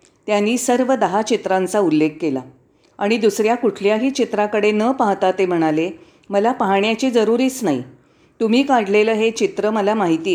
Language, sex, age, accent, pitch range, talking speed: Marathi, female, 40-59, native, 190-245 Hz, 140 wpm